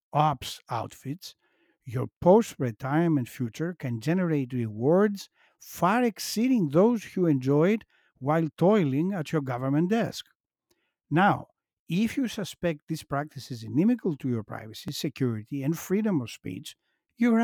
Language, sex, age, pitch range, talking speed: English, male, 60-79, 130-180 Hz, 125 wpm